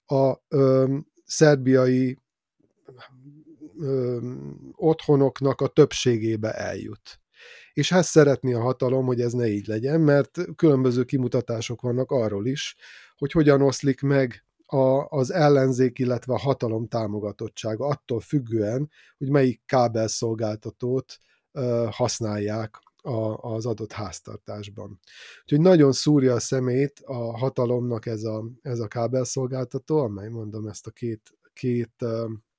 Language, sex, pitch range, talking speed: Hungarian, male, 115-145 Hz, 115 wpm